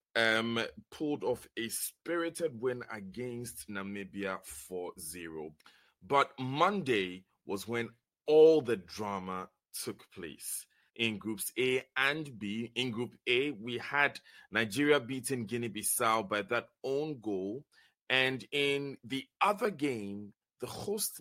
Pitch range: 110-150 Hz